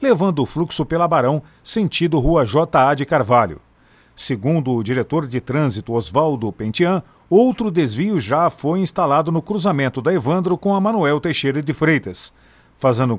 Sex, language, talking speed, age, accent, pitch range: male, Portuguese, 150 wpm, 50-69, Brazilian, 130-180 Hz